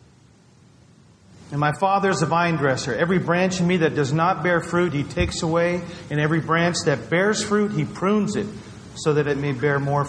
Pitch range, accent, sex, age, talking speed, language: 130-170 Hz, American, male, 40-59, 200 wpm, English